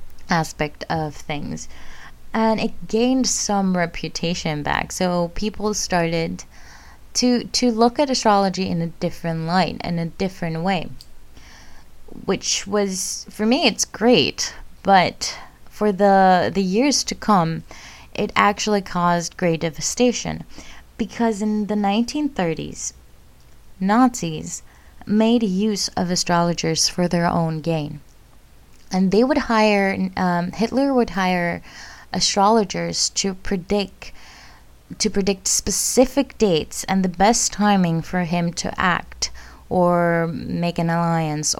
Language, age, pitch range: English, 20-39, 160-210 Hz